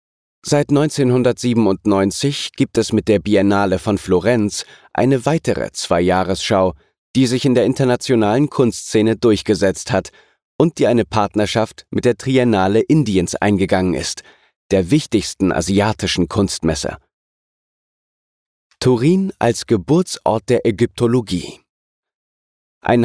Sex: male